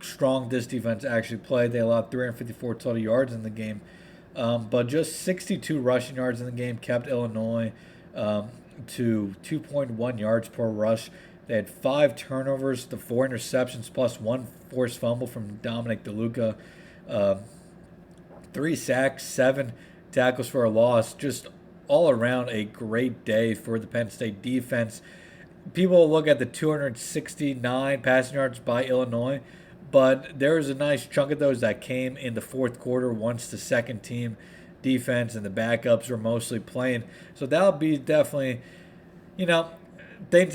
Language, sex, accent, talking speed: English, male, American, 155 wpm